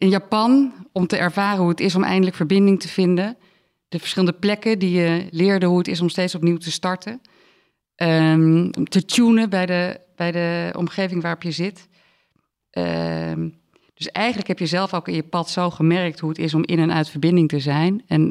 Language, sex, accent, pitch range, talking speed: Dutch, female, Dutch, 165-195 Hz, 200 wpm